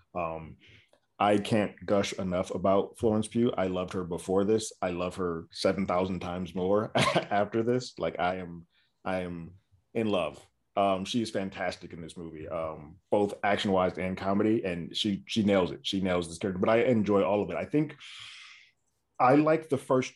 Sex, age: male, 30-49